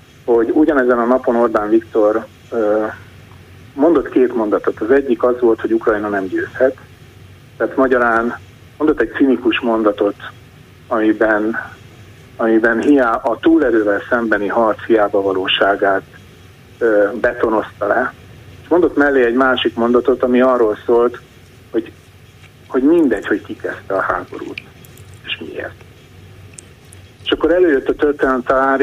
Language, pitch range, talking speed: Hungarian, 110-145 Hz, 120 wpm